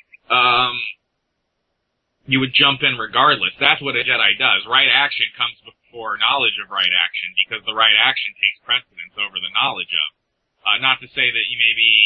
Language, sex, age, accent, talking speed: English, male, 30-49, American, 185 wpm